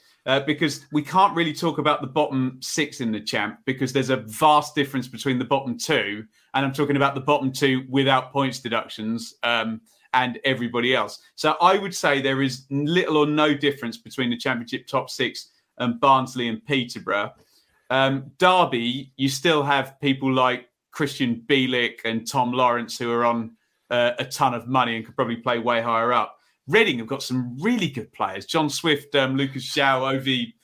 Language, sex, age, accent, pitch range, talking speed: English, male, 30-49, British, 120-145 Hz, 185 wpm